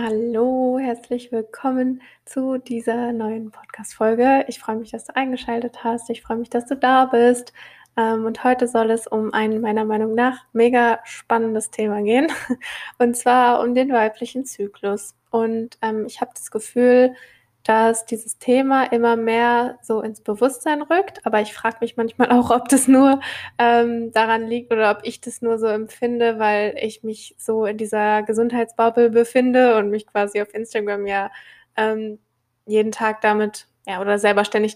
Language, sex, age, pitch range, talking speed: German, female, 10-29, 215-240 Hz, 165 wpm